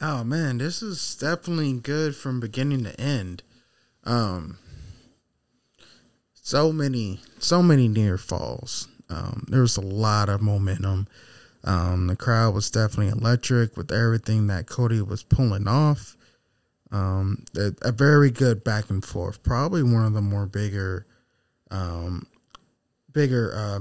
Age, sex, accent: 20-39, male, American